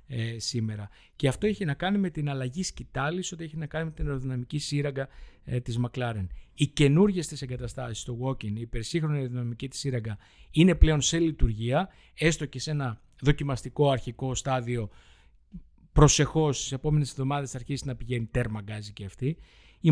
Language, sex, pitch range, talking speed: Greek, male, 115-155 Hz, 155 wpm